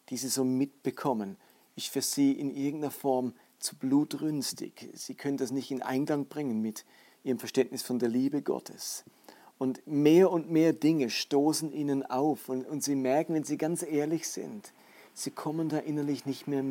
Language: German